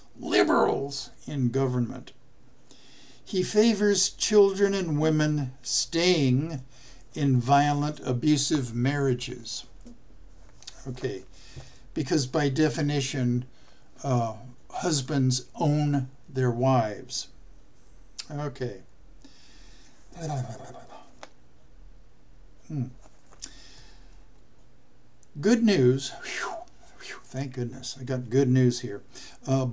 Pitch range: 125-155 Hz